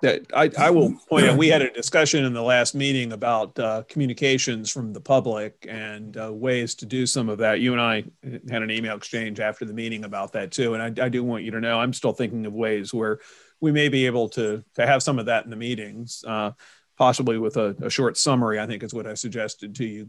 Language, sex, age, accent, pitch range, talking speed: English, male, 40-59, American, 110-130 Hz, 250 wpm